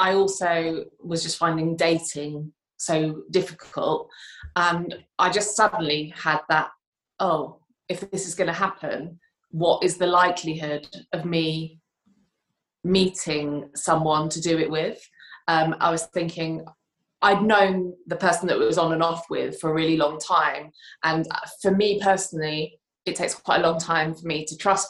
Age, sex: 20-39, female